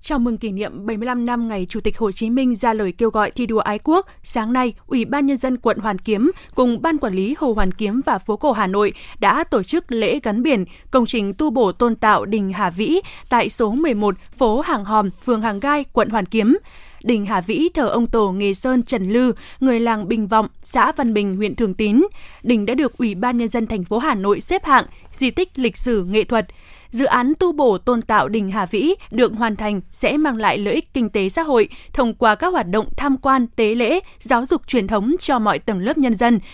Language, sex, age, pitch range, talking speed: Vietnamese, female, 20-39, 215-265 Hz, 240 wpm